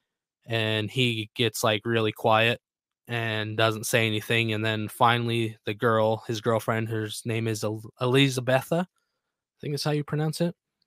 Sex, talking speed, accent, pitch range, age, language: male, 155 wpm, American, 110-125 Hz, 20-39, English